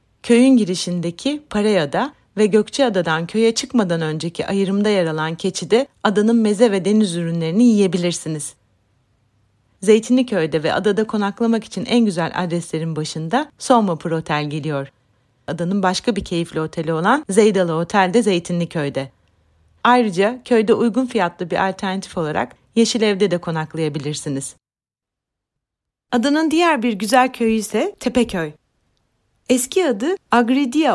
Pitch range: 170-245 Hz